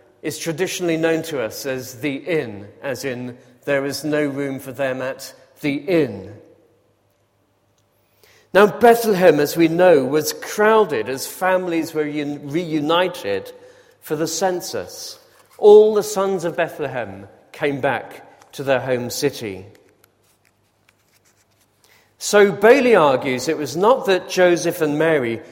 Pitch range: 125-190 Hz